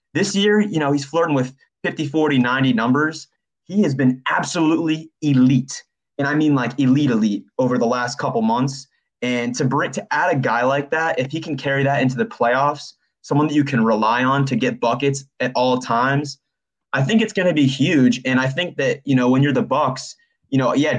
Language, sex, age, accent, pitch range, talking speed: English, male, 20-39, American, 125-150 Hz, 215 wpm